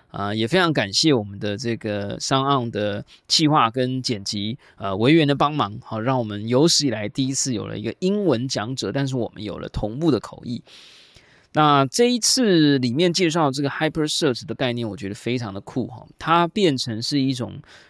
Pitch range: 110-145 Hz